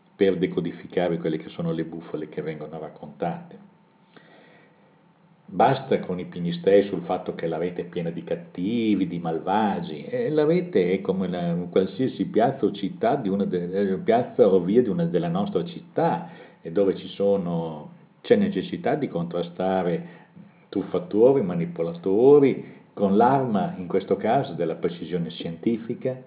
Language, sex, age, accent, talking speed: Italian, male, 50-69, native, 150 wpm